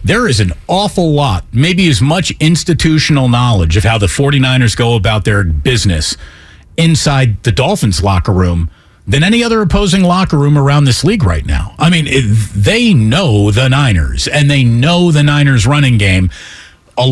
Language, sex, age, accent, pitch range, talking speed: English, male, 40-59, American, 110-170 Hz, 170 wpm